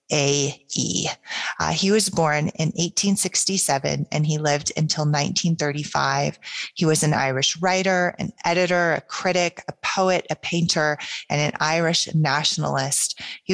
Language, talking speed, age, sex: English, 135 wpm, 30-49, female